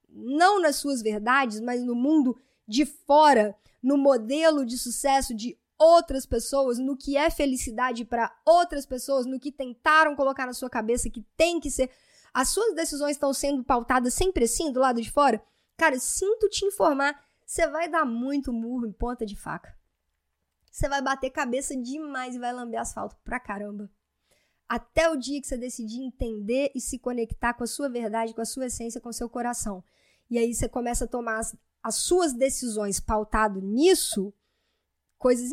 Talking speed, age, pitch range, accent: 175 wpm, 10-29, 230-290 Hz, Brazilian